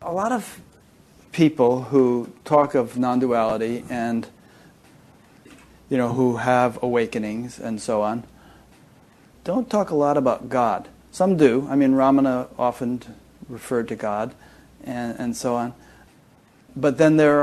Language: English